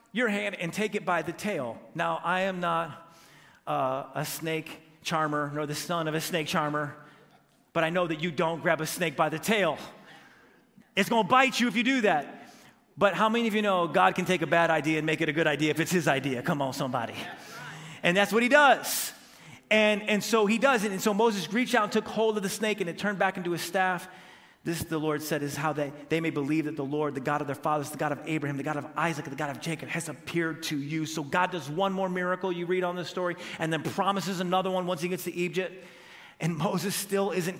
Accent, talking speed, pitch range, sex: American, 250 wpm, 160-235 Hz, male